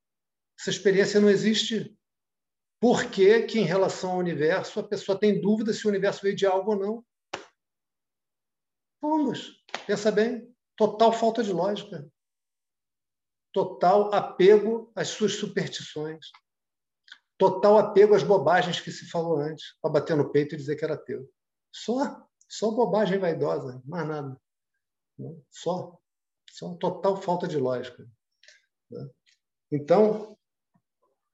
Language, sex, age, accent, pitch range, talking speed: Portuguese, male, 50-69, Brazilian, 150-210 Hz, 125 wpm